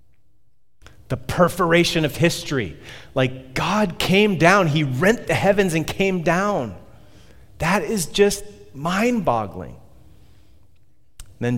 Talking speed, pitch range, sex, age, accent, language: 105 wpm, 115-150 Hz, male, 30-49, American, English